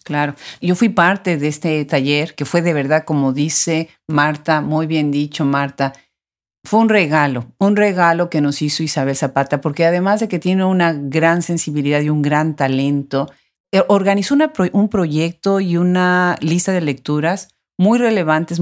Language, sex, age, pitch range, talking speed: Spanish, female, 40-59, 145-180 Hz, 170 wpm